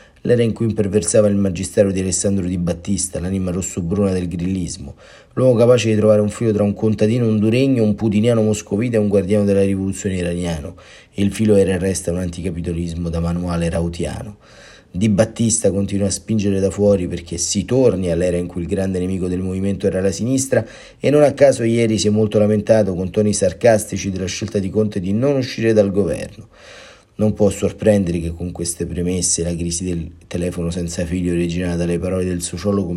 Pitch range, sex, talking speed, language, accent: 90-105 Hz, male, 185 wpm, Italian, native